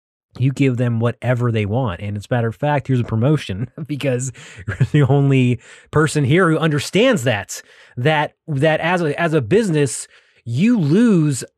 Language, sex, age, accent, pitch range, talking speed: English, male, 30-49, American, 110-145 Hz, 170 wpm